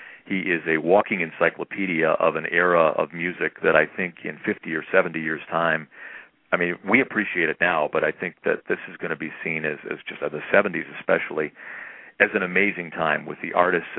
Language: English